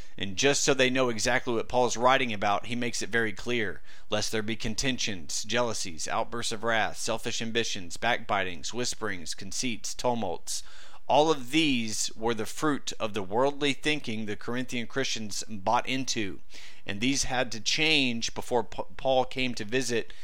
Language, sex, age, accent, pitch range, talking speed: English, male, 40-59, American, 110-130 Hz, 165 wpm